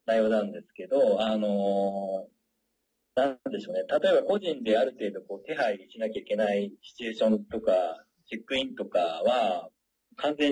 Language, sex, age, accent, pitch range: Japanese, male, 40-59, native, 105-175 Hz